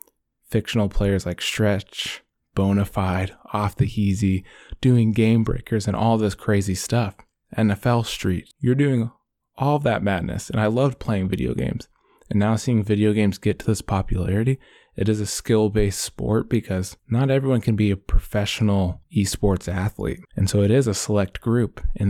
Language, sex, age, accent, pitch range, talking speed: English, male, 20-39, American, 100-115 Hz, 165 wpm